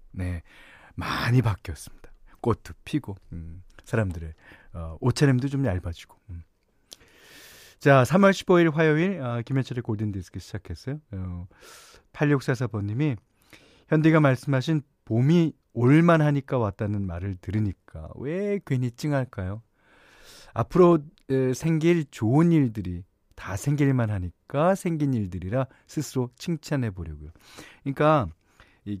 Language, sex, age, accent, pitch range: Korean, male, 40-59, native, 95-150 Hz